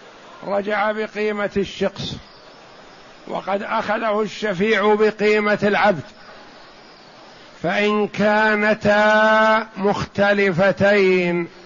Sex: male